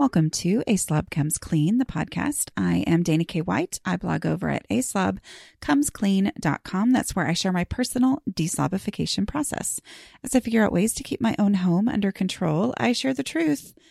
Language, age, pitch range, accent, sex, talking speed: English, 30-49, 165-235 Hz, American, female, 180 wpm